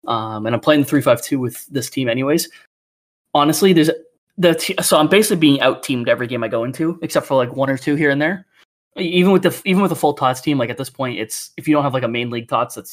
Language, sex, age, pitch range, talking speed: English, male, 20-39, 115-150 Hz, 265 wpm